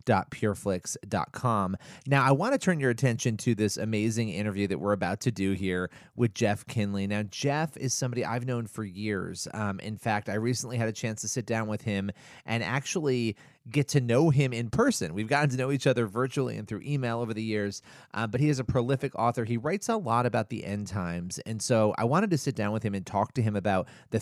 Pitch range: 105-140 Hz